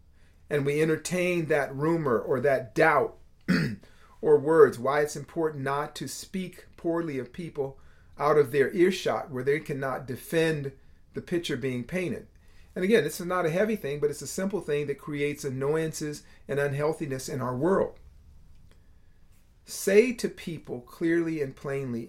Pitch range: 120-165 Hz